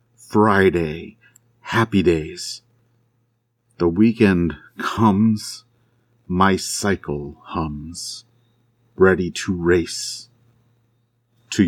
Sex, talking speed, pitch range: male, 65 wpm, 95-120 Hz